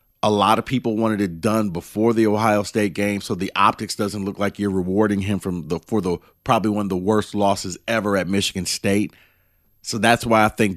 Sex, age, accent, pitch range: male, 40-59, American, 95-115 Hz